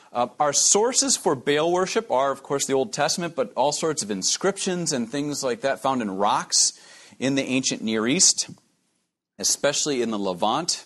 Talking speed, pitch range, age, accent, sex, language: 180 wpm, 125-165 Hz, 40-59, American, male, English